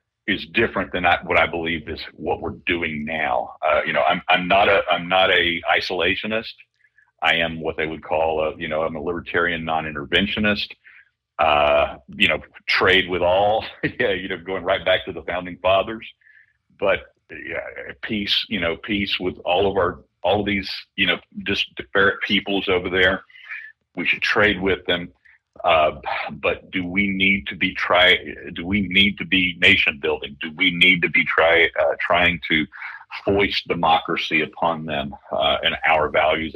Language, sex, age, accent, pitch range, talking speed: English, male, 50-69, American, 80-100 Hz, 175 wpm